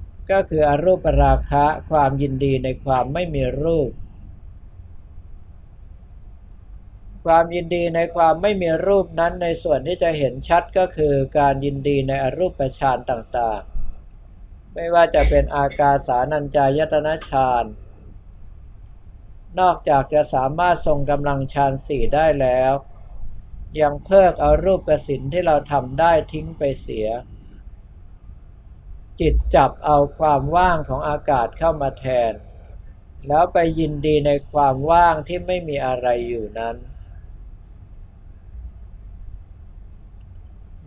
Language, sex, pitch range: Thai, male, 90-155 Hz